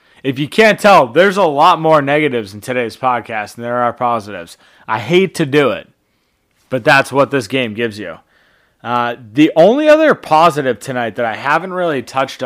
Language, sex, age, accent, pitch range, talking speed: English, male, 30-49, American, 120-165 Hz, 190 wpm